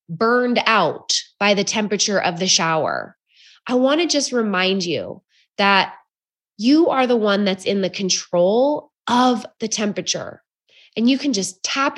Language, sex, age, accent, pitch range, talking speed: English, female, 20-39, American, 195-275 Hz, 155 wpm